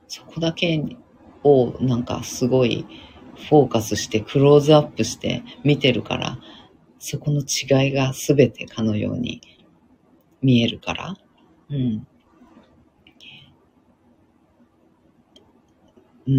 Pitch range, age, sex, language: 110-140 Hz, 50-69, female, Japanese